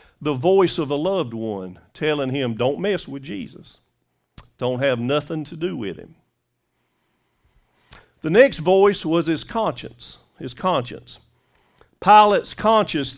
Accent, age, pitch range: American, 50-69, 150-205 Hz